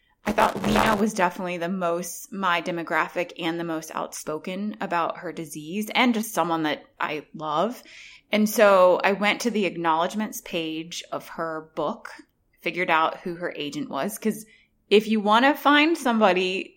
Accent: American